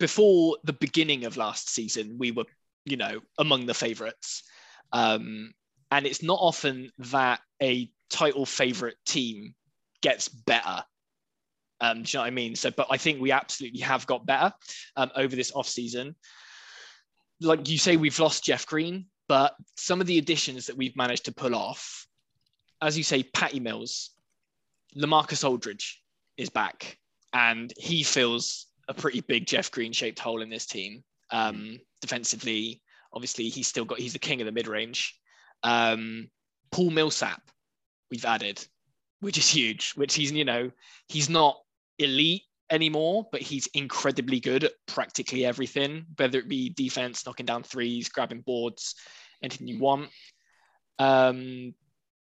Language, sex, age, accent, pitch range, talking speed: English, male, 20-39, British, 120-155 Hz, 145 wpm